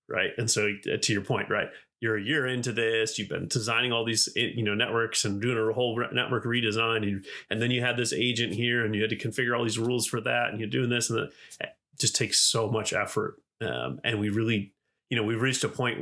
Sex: male